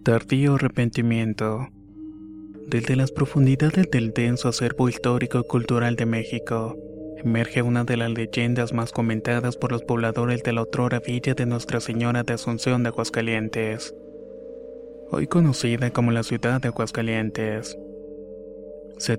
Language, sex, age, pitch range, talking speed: Spanish, male, 20-39, 115-130 Hz, 130 wpm